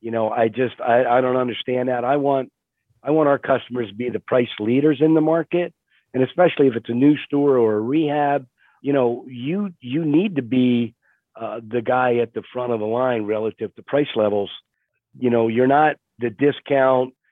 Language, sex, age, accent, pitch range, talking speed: English, male, 40-59, American, 110-135 Hz, 205 wpm